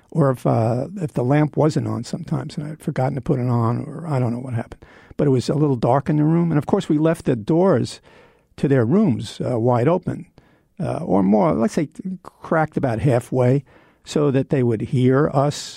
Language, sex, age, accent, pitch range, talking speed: English, male, 50-69, American, 125-160 Hz, 220 wpm